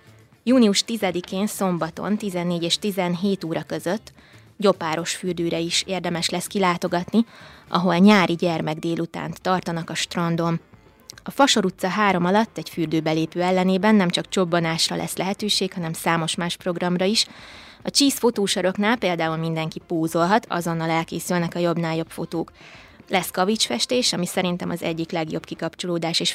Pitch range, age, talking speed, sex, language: 170-190 Hz, 20-39, 135 wpm, female, Hungarian